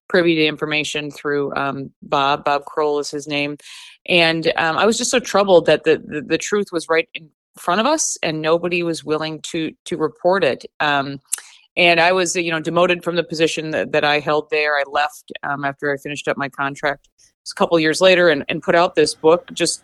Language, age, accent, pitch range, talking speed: English, 30-49, American, 150-180 Hz, 225 wpm